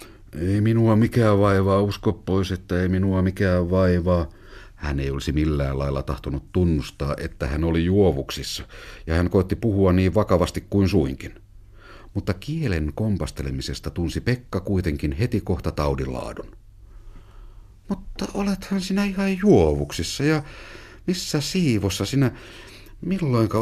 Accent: native